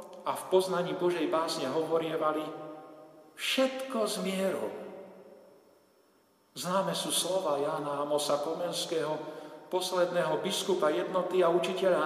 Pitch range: 175-250 Hz